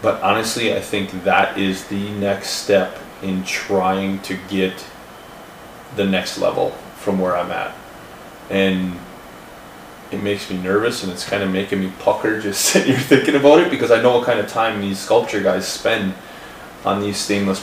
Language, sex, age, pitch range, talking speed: English, male, 20-39, 95-105 Hz, 175 wpm